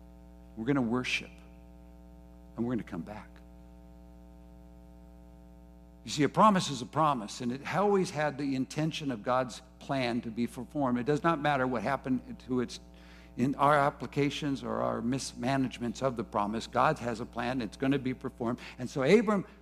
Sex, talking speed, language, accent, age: male, 175 wpm, English, American, 60-79